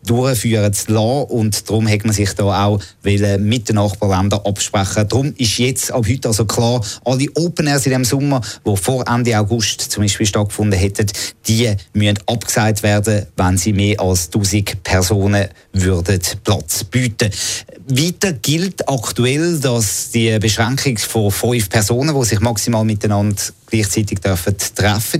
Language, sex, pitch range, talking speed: German, male, 105-120 Hz, 150 wpm